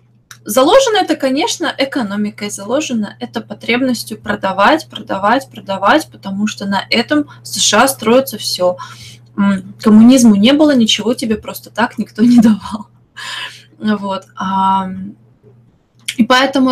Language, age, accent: Russian, 20-39, native